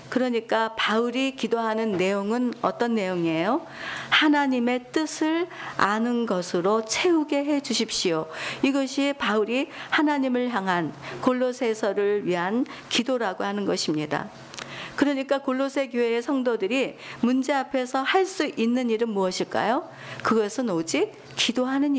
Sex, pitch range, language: female, 205-275 Hz, Korean